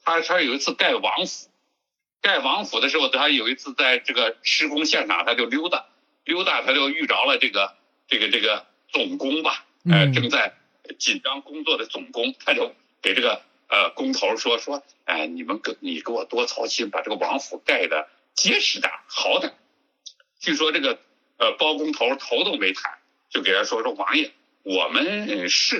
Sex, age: male, 60-79